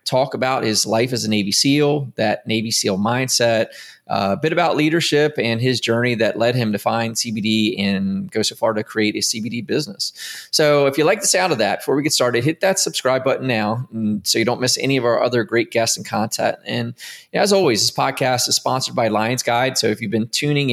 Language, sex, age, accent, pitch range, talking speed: English, male, 20-39, American, 110-135 Hz, 230 wpm